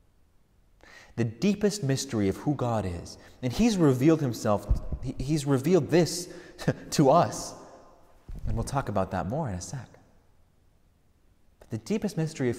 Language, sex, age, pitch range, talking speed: English, male, 30-49, 100-155 Hz, 145 wpm